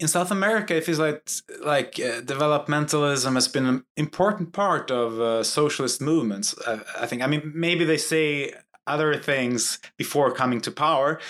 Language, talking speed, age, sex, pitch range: Swedish, 170 wpm, 20-39, male, 115-145 Hz